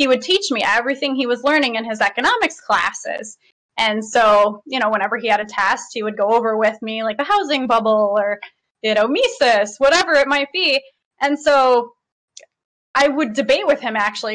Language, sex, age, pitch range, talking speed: English, female, 20-39, 220-285 Hz, 195 wpm